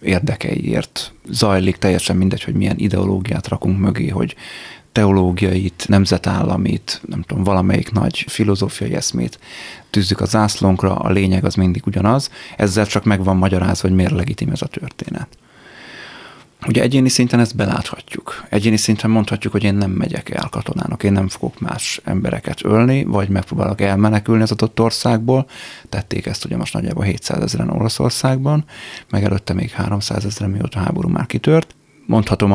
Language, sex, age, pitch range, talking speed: Hungarian, male, 30-49, 100-110 Hz, 145 wpm